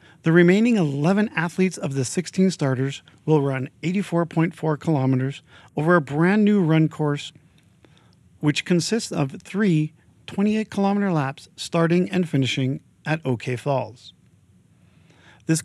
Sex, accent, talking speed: male, American, 120 wpm